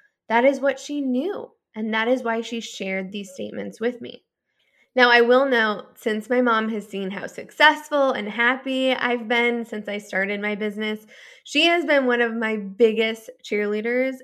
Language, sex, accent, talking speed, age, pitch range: English, female, American, 180 wpm, 10-29, 210-270 Hz